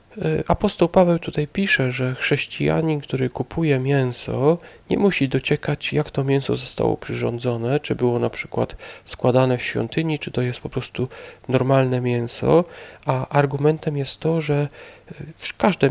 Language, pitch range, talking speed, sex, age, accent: Polish, 130-155 Hz, 140 wpm, male, 40-59, native